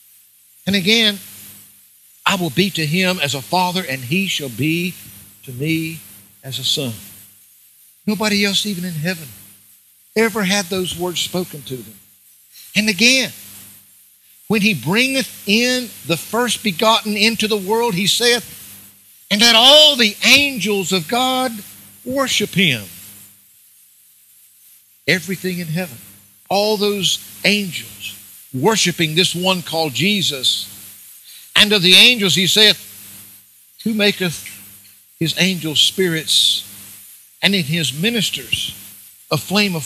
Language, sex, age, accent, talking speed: English, male, 60-79, American, 125 wpm